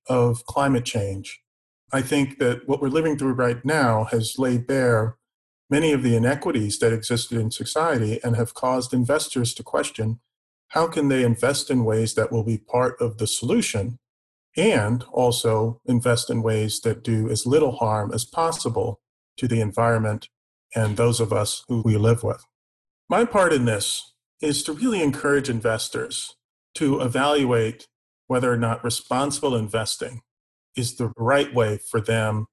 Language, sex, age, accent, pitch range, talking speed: English, male, 40-59, American, 115-140 Hz, 160 wpm